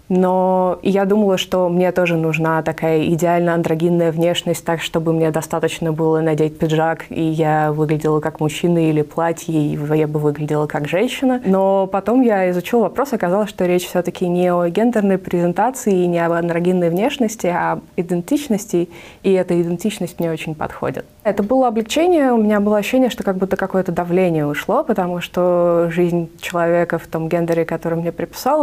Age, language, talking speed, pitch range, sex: 20-39, Russian, 170 wpm, 165-190 Hz, female